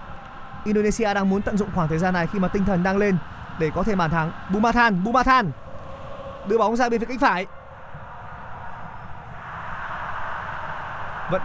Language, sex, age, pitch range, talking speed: Vietnamese, male, 20-39, 170-230 Hz, 155 wpm